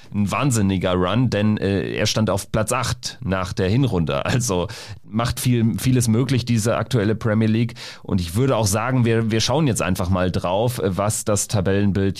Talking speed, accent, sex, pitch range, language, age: 175 wpm, German, male, 105-135 Hz, German, 40-59